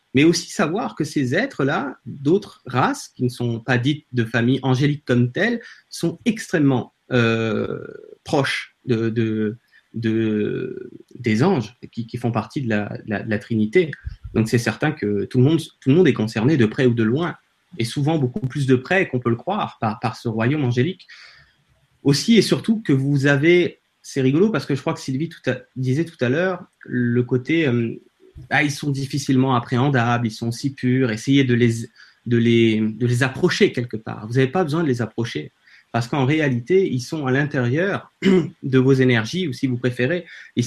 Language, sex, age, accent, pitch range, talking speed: French, male, 30-49, French, 120-160 Hz, 200 wpm